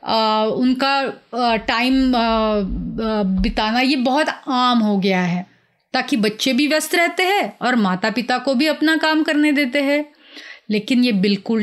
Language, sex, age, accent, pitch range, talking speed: Hindi, female, 30-49, native, 210-300 Hz, 165 wpm